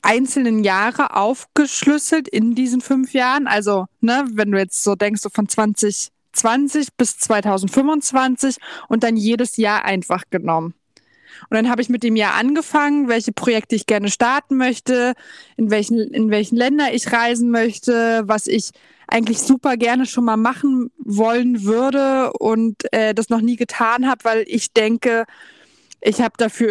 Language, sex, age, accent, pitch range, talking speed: German, female, 20-39, German, 225-260 Hz, 155 wpm